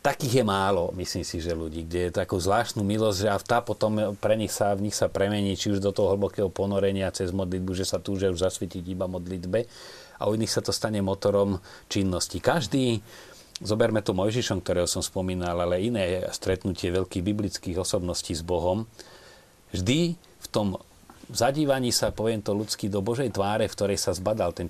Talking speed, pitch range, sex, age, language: 185 wpm, 95-115 Hz, male, 40-59, Slovak